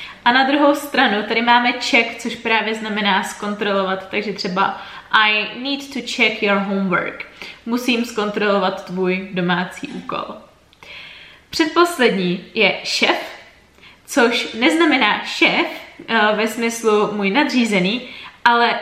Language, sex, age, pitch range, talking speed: Czech, female, 20-39, 195-245 Hz, 110 wpm